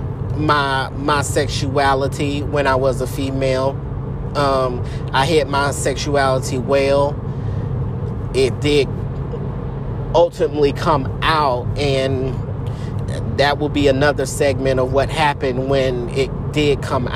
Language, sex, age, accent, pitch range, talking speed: English, male, 30-49, American, 125-140 Hz, 110 wpm